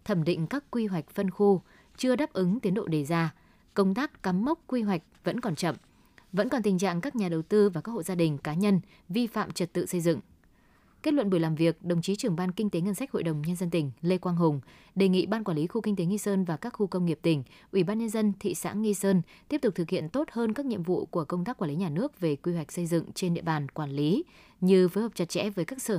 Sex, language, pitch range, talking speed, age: female, Vietnamese, 170-205 Hz, 285 wpm, 20-39